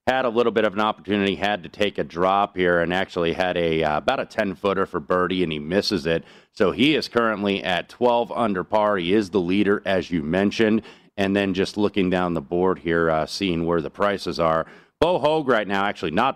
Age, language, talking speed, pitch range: 30-49, English, 230 wpm, 85-105 Hz